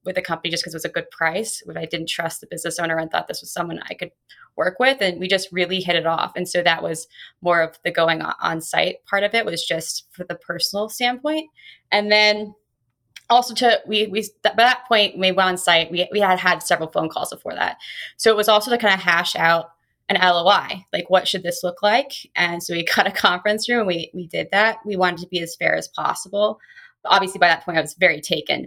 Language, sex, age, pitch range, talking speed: English, female, 20-39, 170-210 Hz, 250 wpm